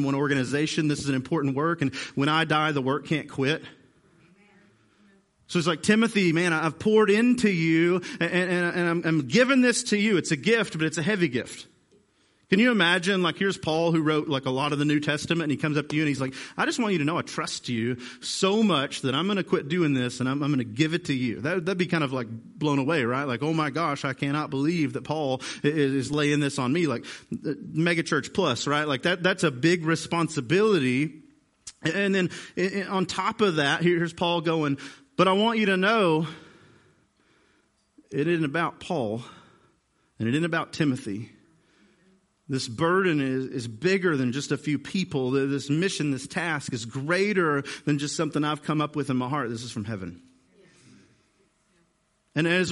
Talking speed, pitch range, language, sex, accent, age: 210 wpm, 130-175 Hz, English, male, American, 40-59